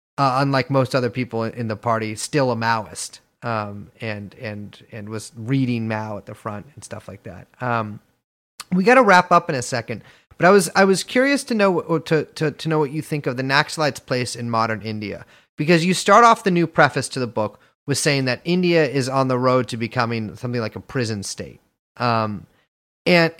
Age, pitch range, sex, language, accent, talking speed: 30-49, 115-155 Hz, male, English, American, 215 wpm